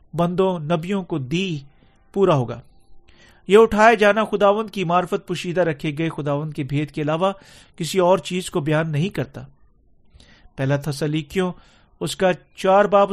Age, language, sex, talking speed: 40-59, Urdu, male, 150 wpm